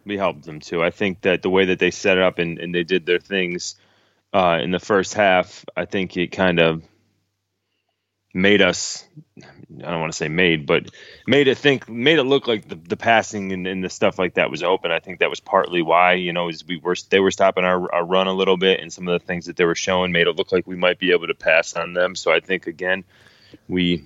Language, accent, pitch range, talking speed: English, American, 90-100 Hz, 250 wpm